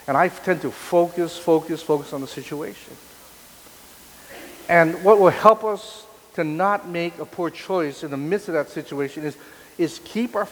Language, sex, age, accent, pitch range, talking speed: English, male, 50-69, American, 150-210 Hz, 175 wpm